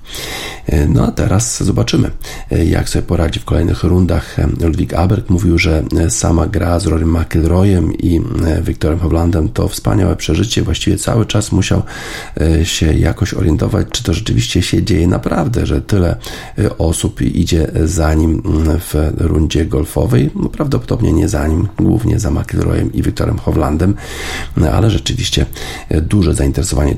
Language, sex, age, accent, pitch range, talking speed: Polish, male, 50-69, native, 80-100 Hz, 135 wpm